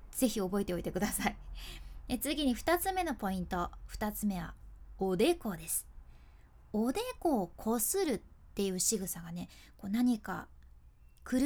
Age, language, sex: 20-39, Japanese, female